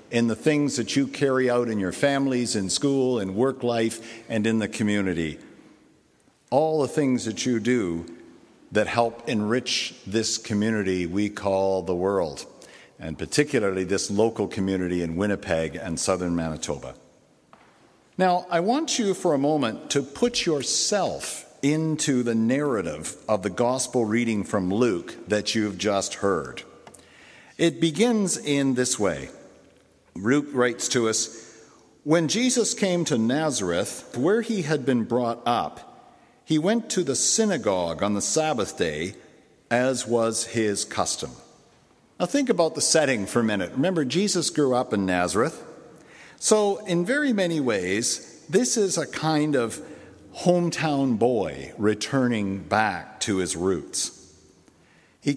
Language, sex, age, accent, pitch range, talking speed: English, male, 50-69, American, 105-155 Hz, 145 wpm